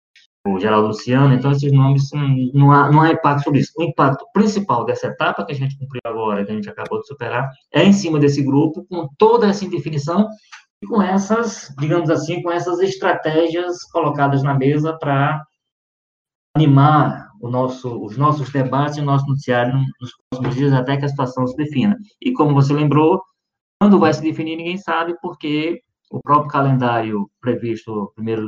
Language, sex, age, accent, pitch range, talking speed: Portuguese, male, 20-39, Brazilian, 125-160 Hz, 180 wpm